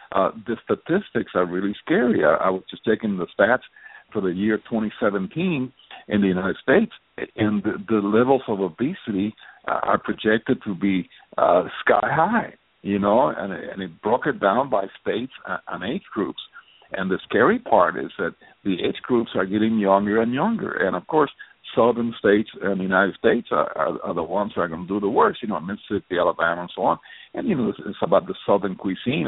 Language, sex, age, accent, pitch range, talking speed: English, male, 60-79, American, 100-135 Hz, 205 wpm